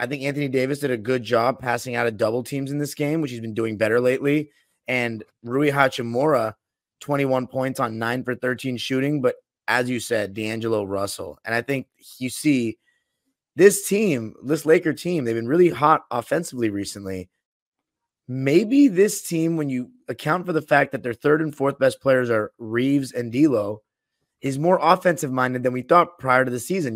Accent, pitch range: American, 115-140 Hz